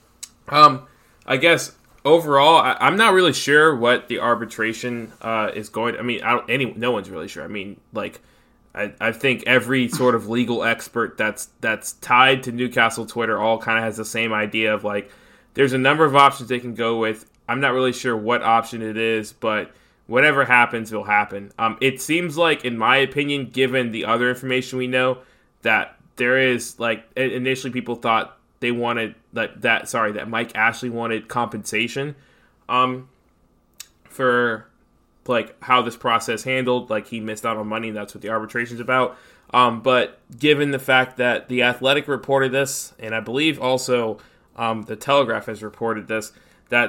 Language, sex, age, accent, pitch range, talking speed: English, male, 20-39, American, 110-130 Hz, 185 wpm